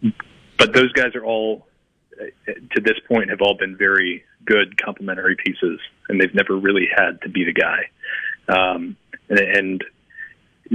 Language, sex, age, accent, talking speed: English, male, 30-49, American, 150 wpm